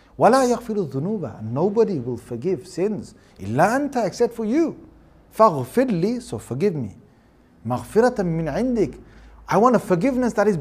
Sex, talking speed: male, 140 wpm